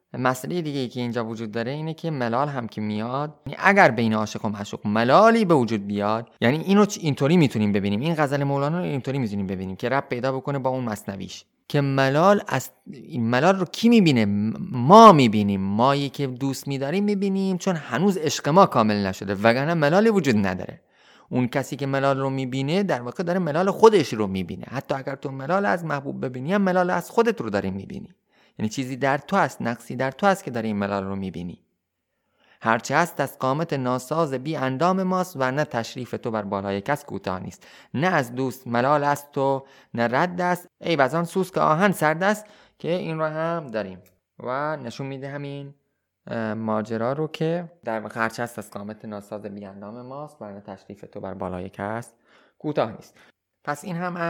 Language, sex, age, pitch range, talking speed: Persian, male, 30-49, 115-165 Hz, 195 wpm